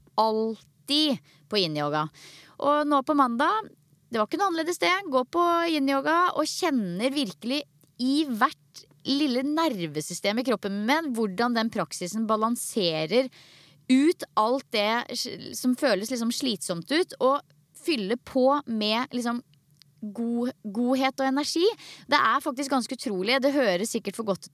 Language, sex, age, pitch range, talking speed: English, female, 20-39, 200-280 Hz, 140 wpm